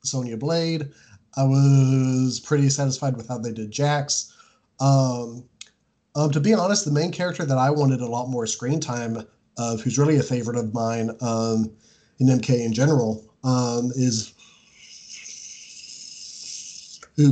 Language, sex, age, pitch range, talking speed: English, male, 30-49, 115-135 Hz, 145 wpm